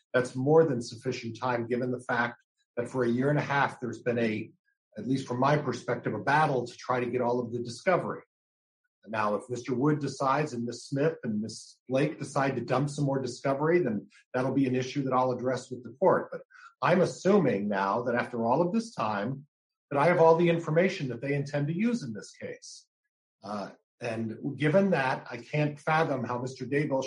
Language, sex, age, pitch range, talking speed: English, male, 50-69, 120-155 Hz, 210 wpm